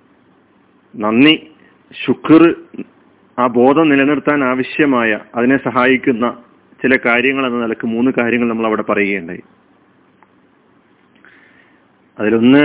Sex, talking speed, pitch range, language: male, 85 wpm, 120-150 Hz, Malayalam